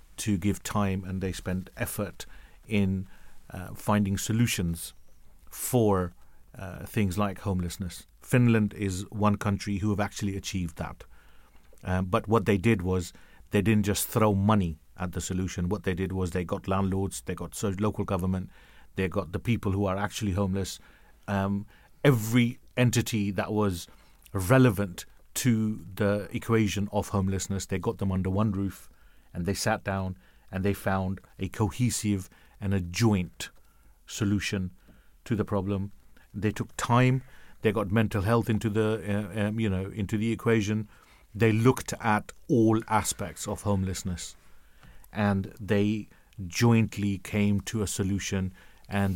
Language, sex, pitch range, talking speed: English, male, 95-110 Hz, 150 wpm